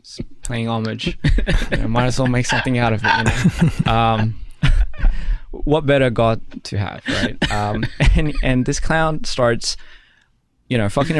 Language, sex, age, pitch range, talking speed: English, male, 20-39, 105-125 Hz, 140 wpm